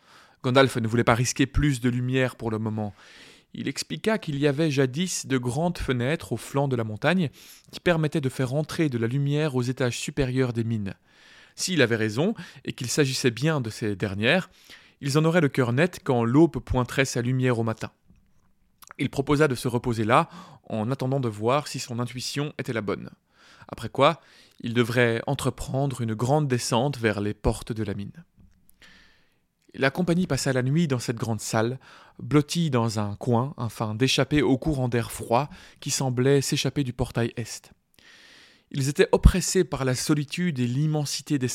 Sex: male